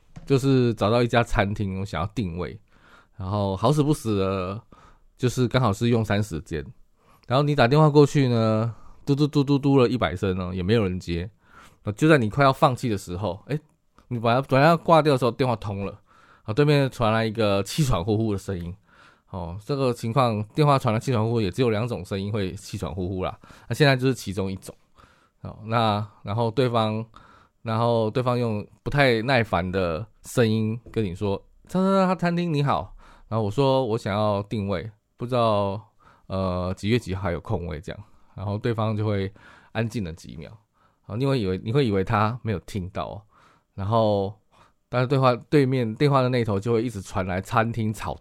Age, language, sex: 20-39, Chinese, male